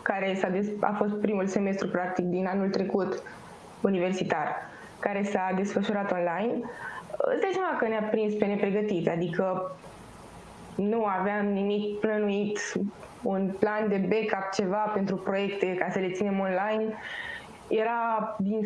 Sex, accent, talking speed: female, native, 140 wpm